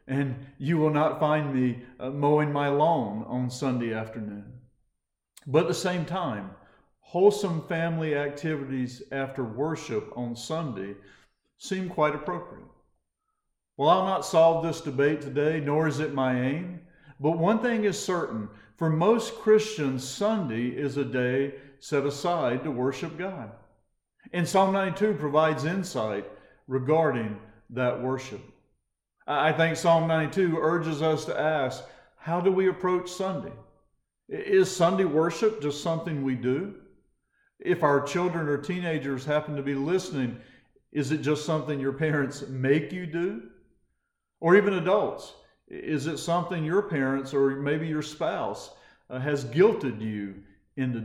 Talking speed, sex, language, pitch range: 140 wpm, male, English, 130-175 Hz